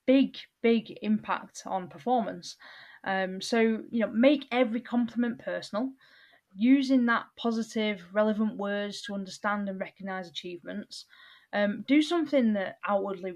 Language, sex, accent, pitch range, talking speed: English, female, British, 190-235 Hz, 125 wpm